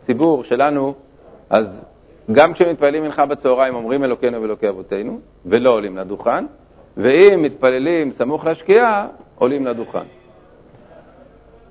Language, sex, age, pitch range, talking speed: Hebrew, male, 50-69, 135-165 Hz, 100 wpm